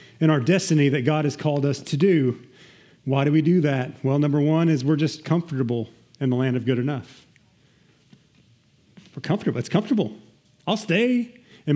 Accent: American